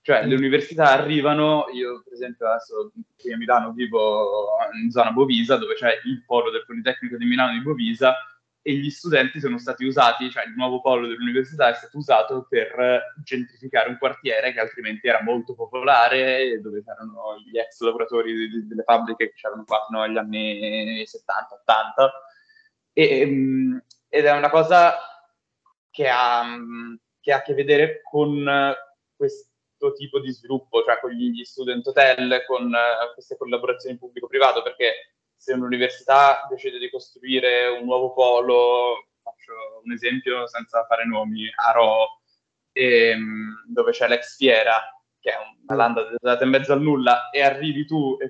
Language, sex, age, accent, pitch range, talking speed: Italian, male, 10-29, native, 120-145 Hz, 155 wpm